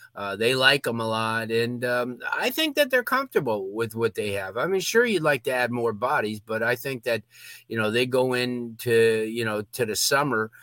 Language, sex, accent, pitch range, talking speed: English, male, American, 115-135 Hz, 225 wpm